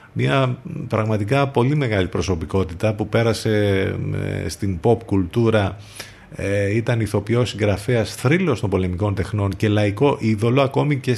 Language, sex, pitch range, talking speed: Greek, male, 95-115 Hz, 125 wpm